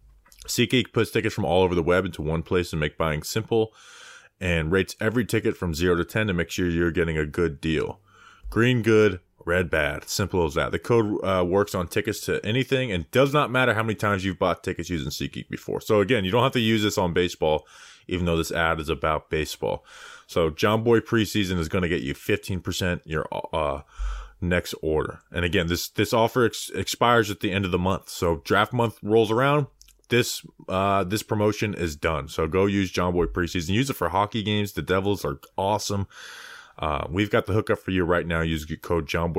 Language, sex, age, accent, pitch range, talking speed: English, male, 20-39, American, 85-120 Hz, 215 wpm